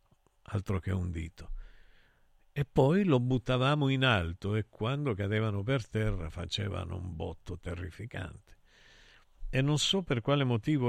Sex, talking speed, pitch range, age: male, 140 wpm, 95-130 Hz, 50-69